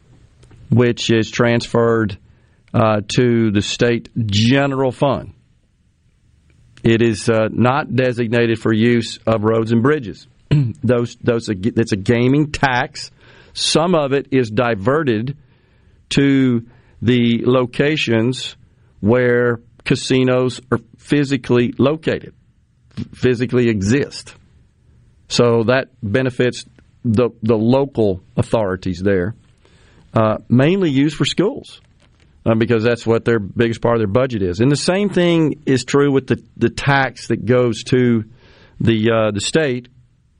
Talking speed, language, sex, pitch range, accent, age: 120 wpm, English, male, 115-130 Hz, American, 50-69